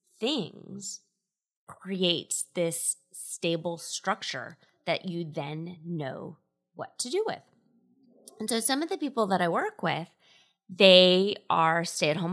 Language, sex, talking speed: English, female, 125 wpm